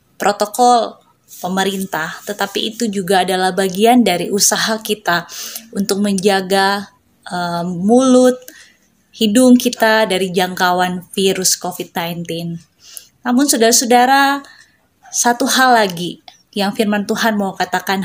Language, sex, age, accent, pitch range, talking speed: Indonesian, female, 20-39, native, 180-225 Hz, 100 wpm